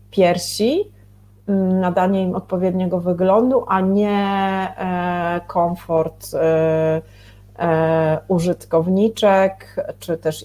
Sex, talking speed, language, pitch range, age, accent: female, 65 wpm, Polish, 160-185 Hz, 30-49, native